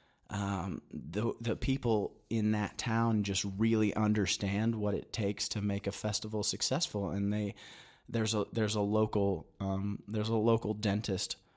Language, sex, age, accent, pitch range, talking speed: English, male, 30-49, American, 100-115 Hz, 155 wpm